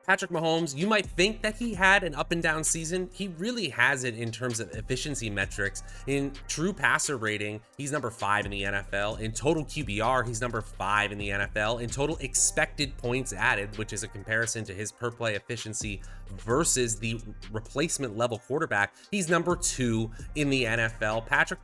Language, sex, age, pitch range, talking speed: English, male, 30-49, 105-140 Hz, 185 wpm